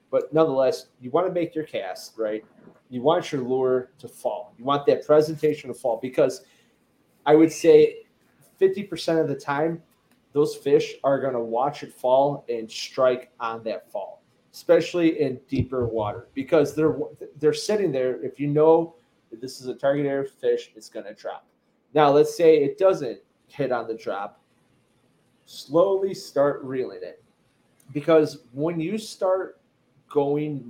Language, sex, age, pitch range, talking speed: English, male, 30-49, 130-170 Hz, 165 wpm